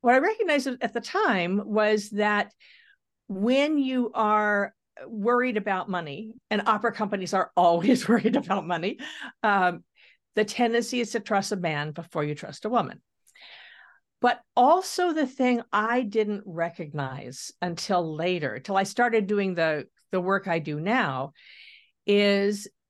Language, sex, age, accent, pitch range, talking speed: English, female, 50-69, American, 175-235 Hz, 145 wpm